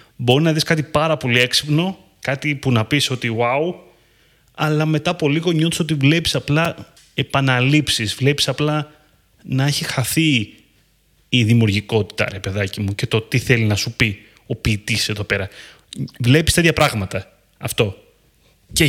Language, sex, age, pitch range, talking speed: Greek, male, 30-49, 110-150 Hz, 155 wpm